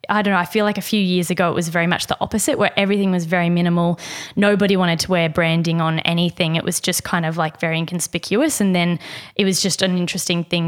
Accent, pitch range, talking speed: Australian, 170-195 Hz, 245 wpm